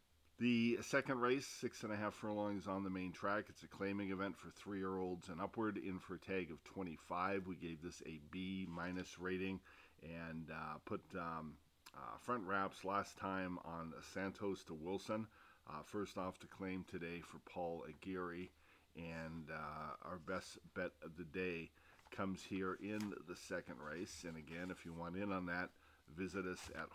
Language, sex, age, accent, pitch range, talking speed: English, male, 40-59, American, 85-100 Hz, 175 wpm